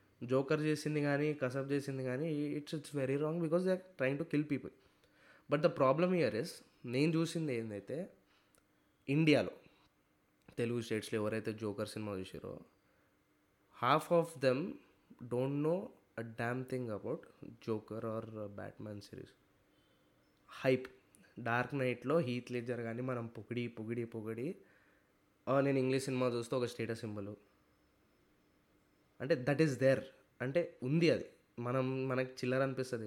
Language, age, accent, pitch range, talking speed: Telugu, 20-39, native, 115-140 Hz, 130 wpm